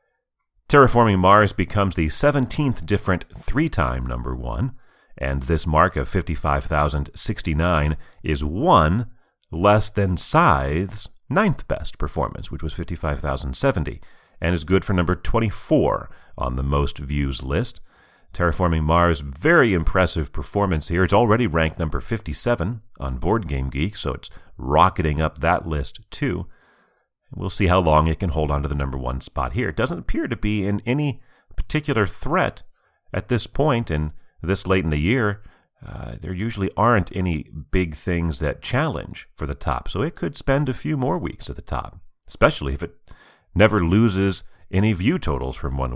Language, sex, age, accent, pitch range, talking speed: English, male, 40-59, American, 75-105 Hz, 160 wpm